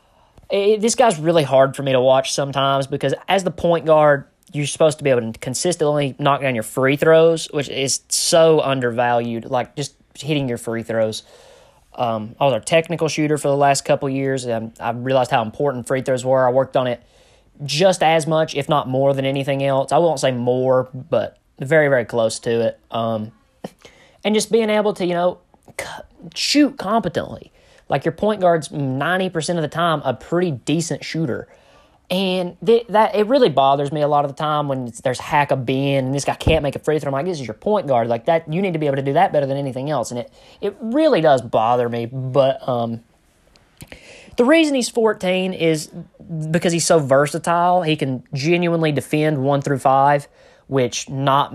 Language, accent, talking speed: English, American, 205 wpm